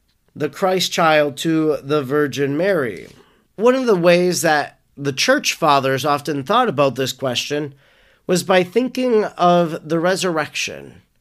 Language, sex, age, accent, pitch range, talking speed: English, male, 40-59, American, 140-180 Hz, 140 wpm